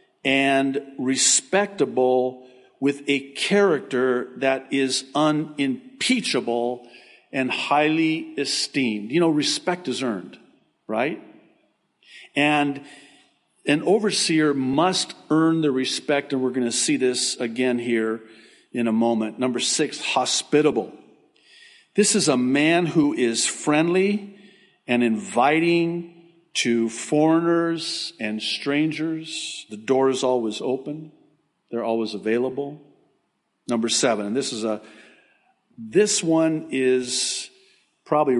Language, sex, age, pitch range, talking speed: English, male, 50-69, 120-160 Hz, 110 wpm